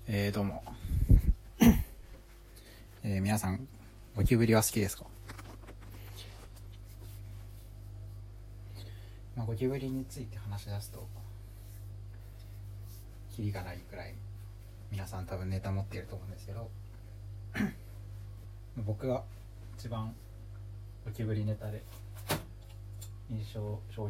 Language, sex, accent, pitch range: Japanese, male, native, 100-105 Hz